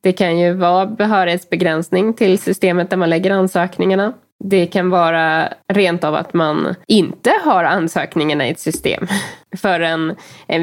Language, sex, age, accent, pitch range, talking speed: English, female, 20-39, Swedish, 170-200 Hz, 150 wpm